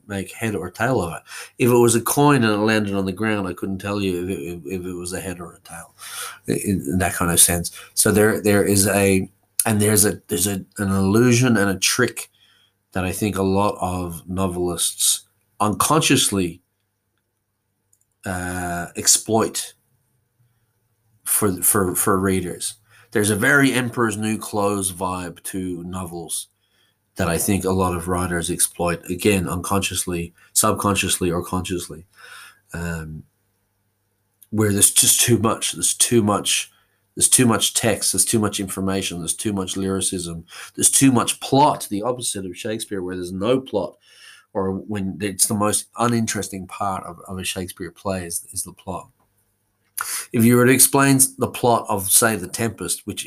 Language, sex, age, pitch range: English, male, 30-49, 90-110 Hz